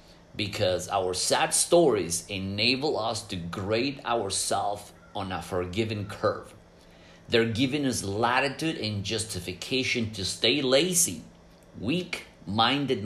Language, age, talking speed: English, 30-49, 105 wpm